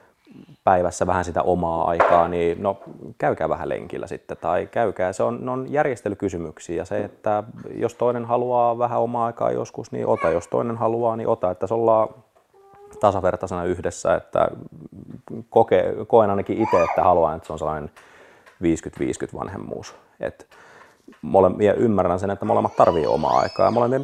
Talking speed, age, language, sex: 155 wpm, 30-49, Finnish, male